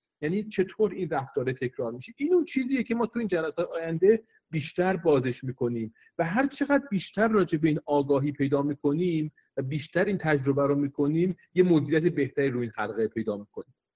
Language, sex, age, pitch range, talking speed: Persian, male, 40-59, 145-185 Hz, 175 wpm